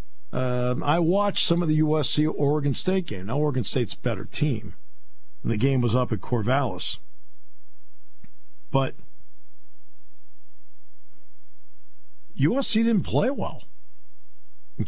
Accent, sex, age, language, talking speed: American, male, 50-69, English, 115 wpm